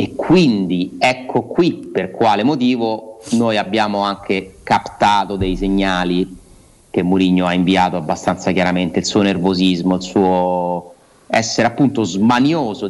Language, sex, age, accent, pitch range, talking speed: Italian, male, 30-49, native, 95-130 Hz, 125 wpm